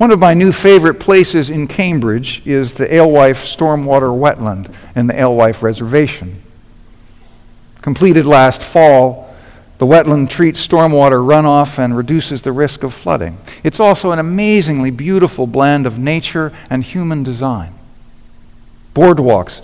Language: English